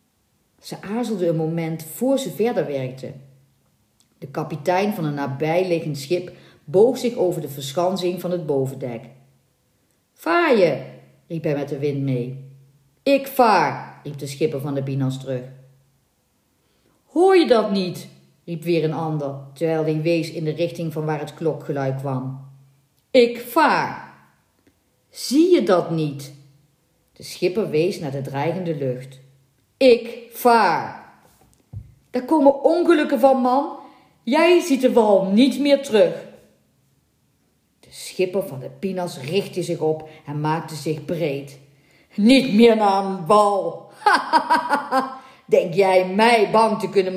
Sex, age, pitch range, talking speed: female, 40-59, 140-235 Hz, 135 wpm